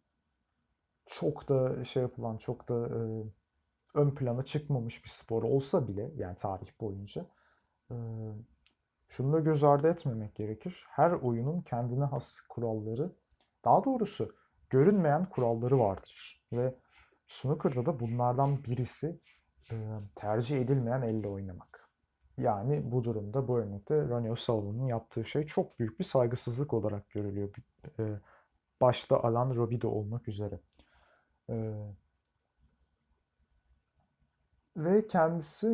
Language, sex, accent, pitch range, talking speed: Turkish, male, native, 105-140 Hz, 110 wpm